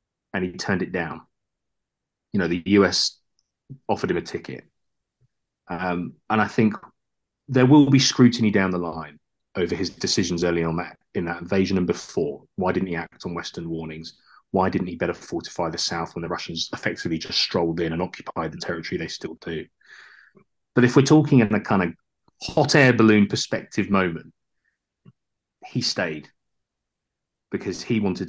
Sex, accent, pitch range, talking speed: male, British, 85-110 Hz, 170 wpm